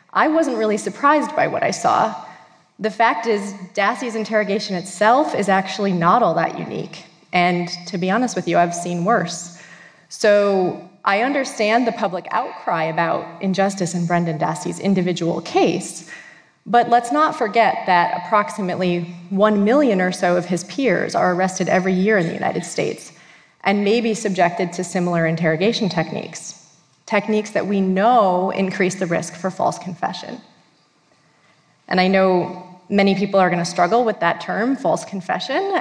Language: Japanese